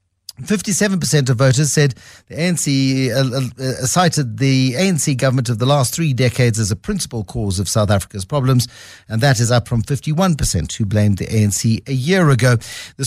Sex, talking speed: male, 180 wpm